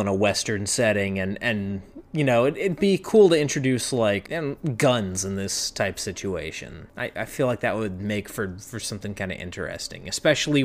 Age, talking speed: 30-49, 195 wpm